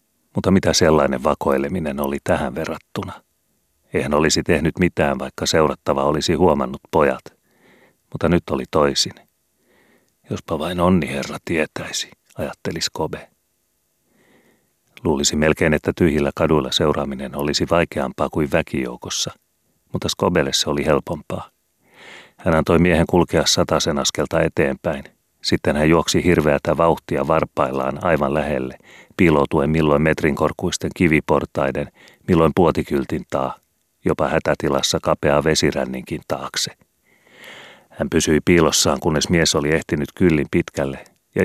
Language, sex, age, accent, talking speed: Finnish, male, 40-59, native, 115 wpm